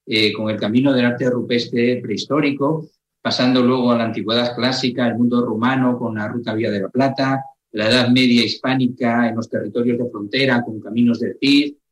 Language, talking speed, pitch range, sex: Spanish, 185 wpm, 115-140 Hz, male